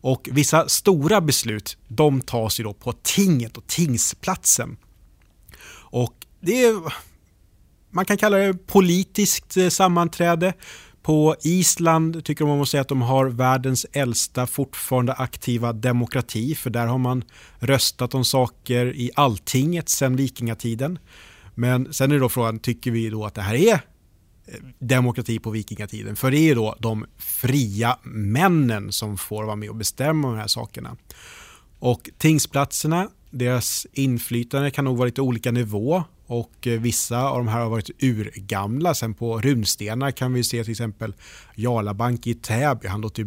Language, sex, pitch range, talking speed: Swedish, male, 110-140 Hz, 150 wpm